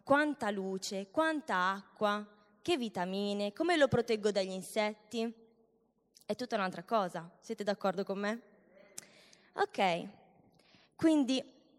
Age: 20-39